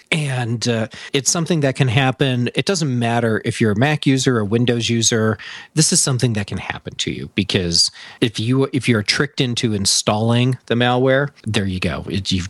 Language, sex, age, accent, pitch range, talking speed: English, male, 40-59, American, 105-130 Hz, 190 wpm